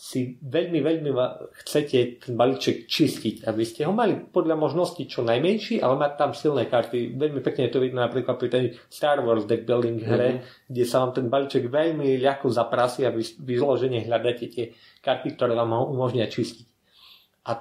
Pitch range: 120-165 Hz